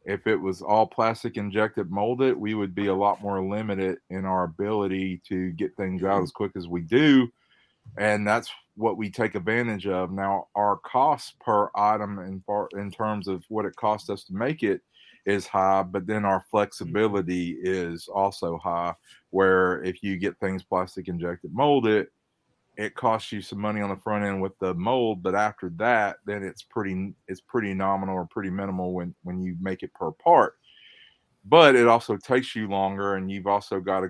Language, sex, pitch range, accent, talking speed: English, male, 95-105 Hz, American, 190 wpm